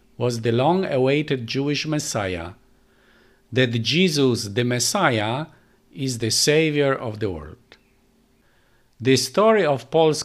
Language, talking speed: English, 110 wpm